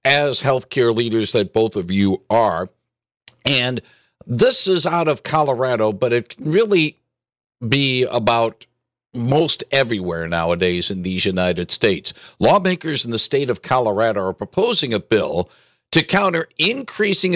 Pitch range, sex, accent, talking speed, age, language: 115-155 Hz, male, American, 140 wpm, 60-79, English